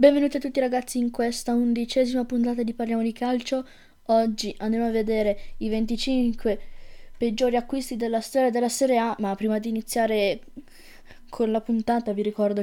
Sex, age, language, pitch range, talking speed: female, 10-29, Italian, 210-235 Hz, 160 wpm